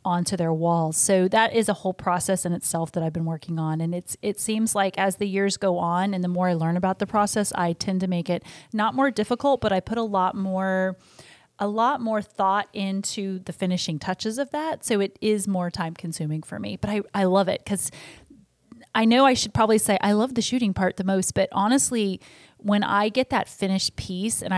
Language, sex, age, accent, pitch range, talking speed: English, female, 30-49, American, 180-210 Hz, 230 wpm